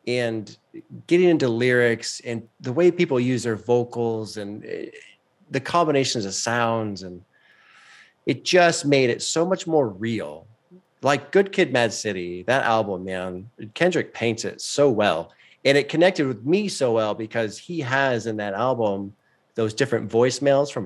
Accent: American